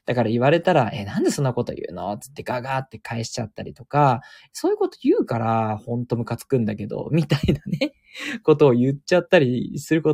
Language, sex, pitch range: Japanese, male, 115-160 Hz